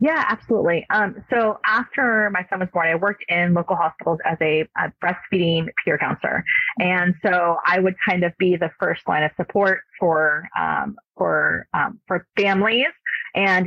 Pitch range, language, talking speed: 160-195 Hz, English, 170 wpm